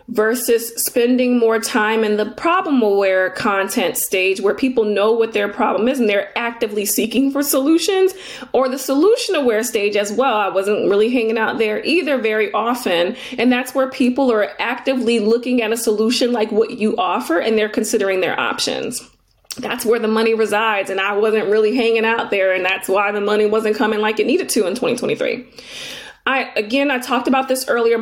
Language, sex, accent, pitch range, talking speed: English, female, American, 215-270 Hz, 195 wpm